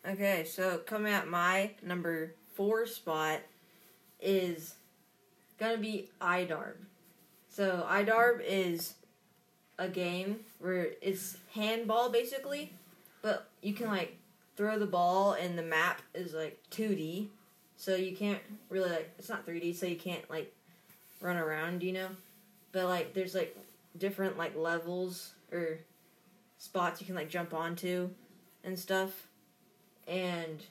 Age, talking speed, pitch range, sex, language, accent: 20-39, 130 wpm, 170-190 Hz, female, English, American